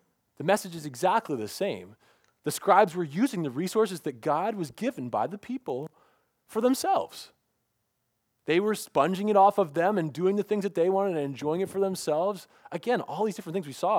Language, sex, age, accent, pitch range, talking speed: English, male, 30-49, American, 115-180 Hz, 200 wpm